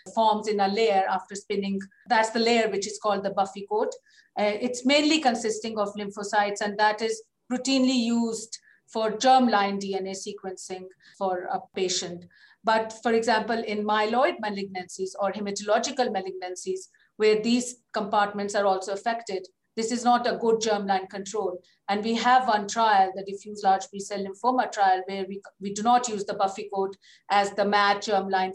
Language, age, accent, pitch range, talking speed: English, 50-69, Indian, 195-225 Hz, 165 wpm